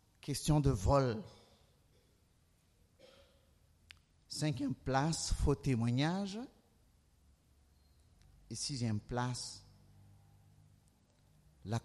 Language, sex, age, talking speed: French, male, 50-69, 55 wpm